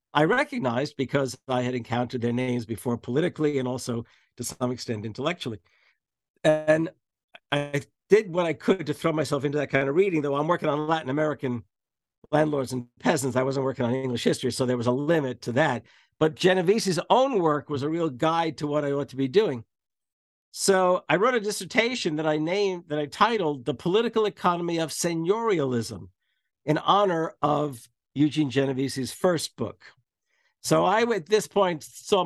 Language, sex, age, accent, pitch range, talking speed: English, male, 50-69, American, 130-170 Hz, 180 wpm